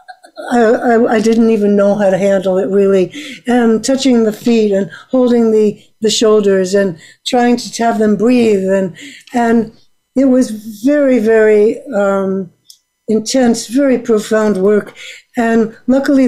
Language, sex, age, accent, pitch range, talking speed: English, female, 60-79, American, 215-255 Hz, 145 wpm